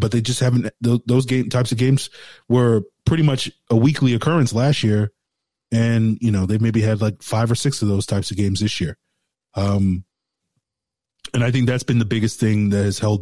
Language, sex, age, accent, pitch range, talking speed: English, male, 20-39, American, 105-120 Hz, 210 wpm